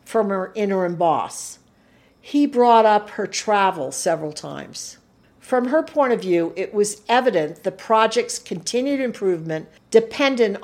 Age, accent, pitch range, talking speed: 50-69, American, 190-245 Hz, 135 wpm